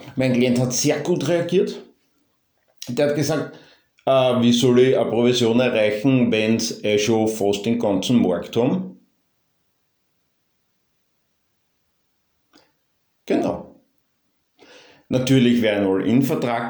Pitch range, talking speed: 105-130 Hz, 110 wpm